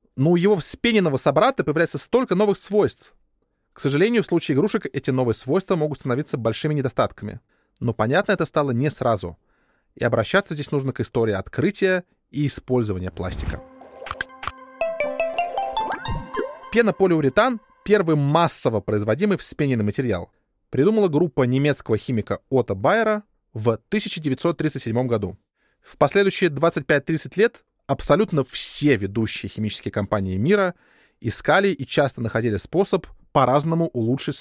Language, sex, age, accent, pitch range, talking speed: Russian, male, 20-39, native, 120-180 Hz, 120 wpm